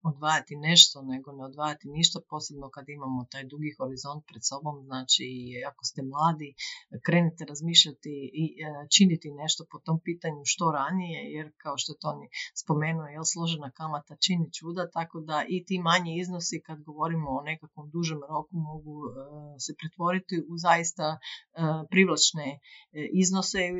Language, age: Croatian, 40-59